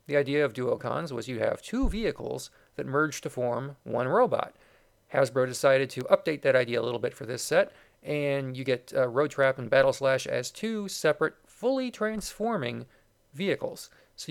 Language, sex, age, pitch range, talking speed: English, male, 40-59, 125-180 Hz, 170 wpm